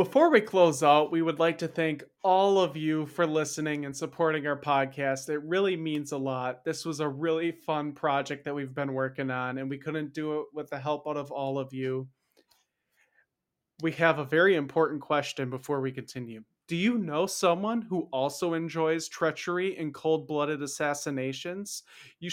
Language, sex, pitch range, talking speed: English, male, 140-175 Hz, 185 wpm